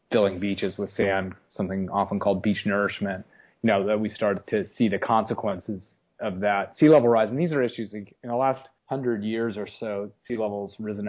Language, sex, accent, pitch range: English, male, American, 100-115 Hz